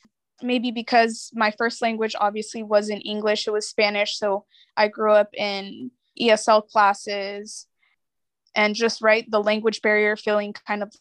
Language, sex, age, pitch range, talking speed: English, female, 20-39, 210-240 Hz, 145 wpm